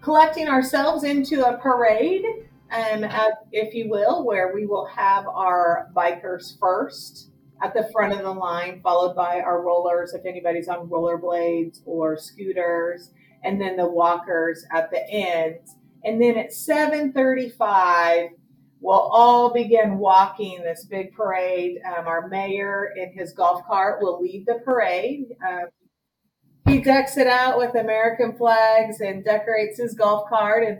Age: 40-59